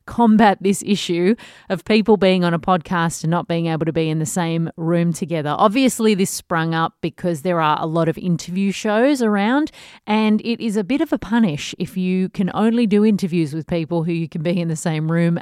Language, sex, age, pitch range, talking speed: English, female, 30-49, 165-205 Hz, 220 wpm